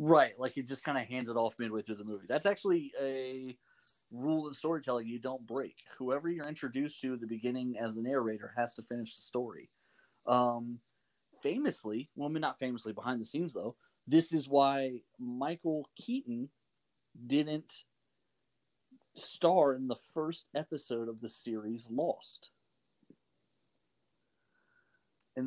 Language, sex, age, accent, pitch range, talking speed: English, male, 30-49, American, 115-140 Hz, 145 wpm